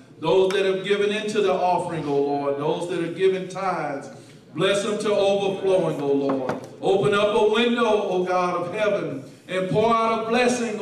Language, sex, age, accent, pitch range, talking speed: English, male, 50-69, American, 155-190 Hz, 185 wpm